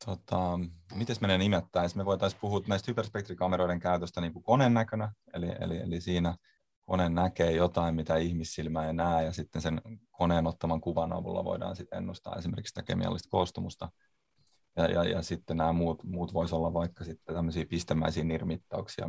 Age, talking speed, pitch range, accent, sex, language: 30-49, 165 wpm, 80-90 Hz, native, male, Finnish